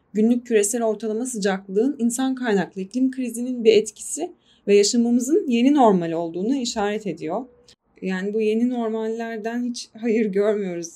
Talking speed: 130 wpm